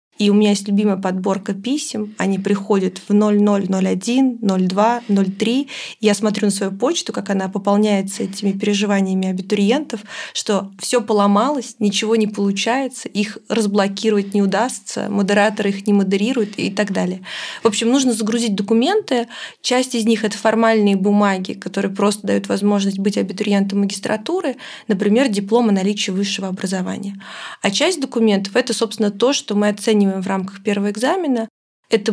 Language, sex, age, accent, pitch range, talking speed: Russian, female, 20-39, native, 200-230 Hz, 145 wpm